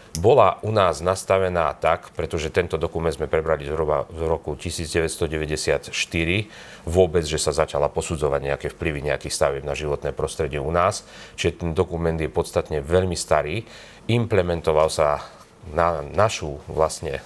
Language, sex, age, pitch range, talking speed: Slovak, male, 40-59, 75-90 Hz, 140 wpm